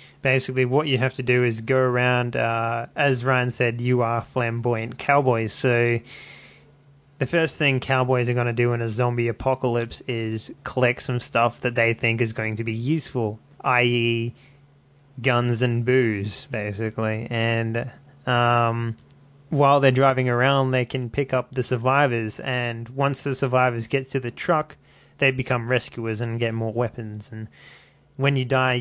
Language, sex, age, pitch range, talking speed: English, male, 20-39, 115-135 Hz, 160 wpm